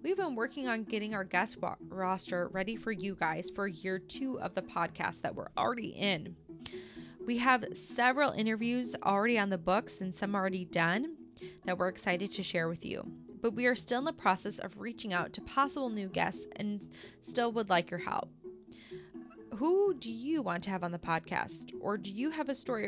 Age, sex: 20-39, female